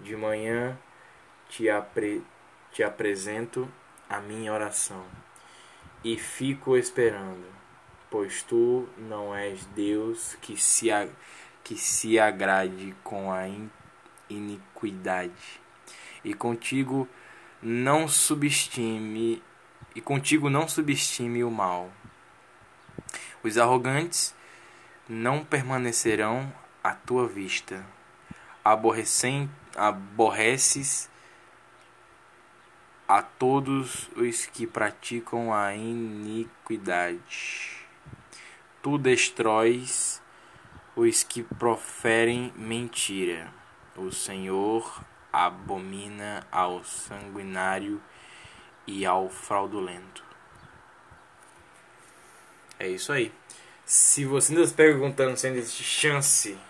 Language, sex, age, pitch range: Portuguese, male, 10-29, 105-135 Hz